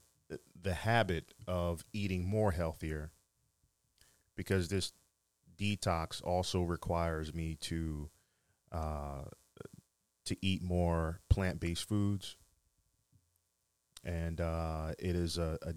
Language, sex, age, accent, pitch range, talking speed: English, male, 30-49, American, 80-95 Hz, 95 wpm